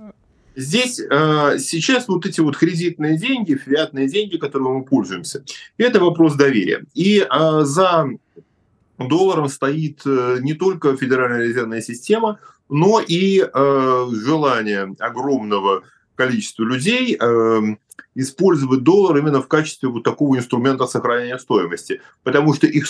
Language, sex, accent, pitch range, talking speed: Russian, male, native, 120-165 Hz, 115 wpm